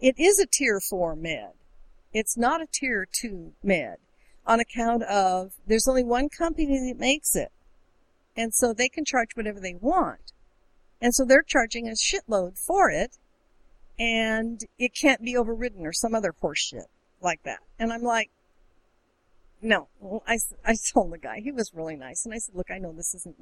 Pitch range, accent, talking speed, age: 195-255 Hz, American, 185 wpm, 50-69